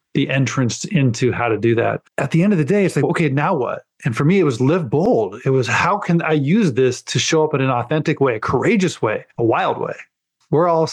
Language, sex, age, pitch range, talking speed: English, male, 20-39, 125-150 Hz, 260 wpm